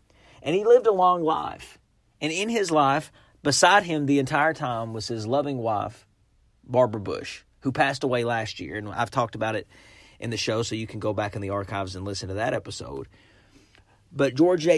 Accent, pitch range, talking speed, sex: American, 105-145 Hz, 200 wpm, male